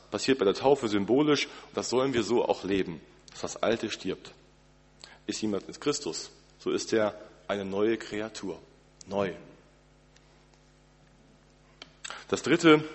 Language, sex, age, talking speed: German, male, 40-59, 130 wpm